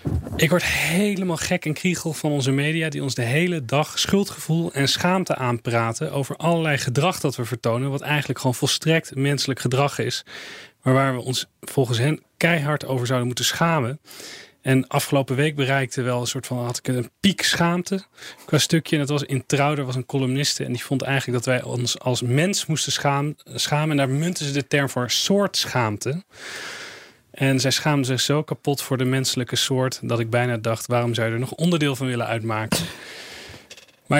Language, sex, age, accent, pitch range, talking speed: Dutch, male, 30-49, Dutch, 130-160 Hz, 195 wpm